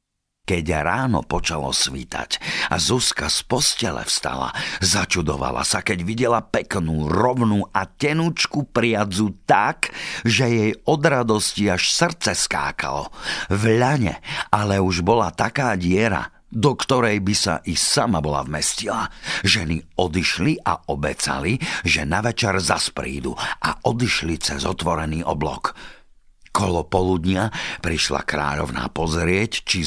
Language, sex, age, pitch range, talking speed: Slovak, male, 50-69, 75-100 Hz, 120 wpm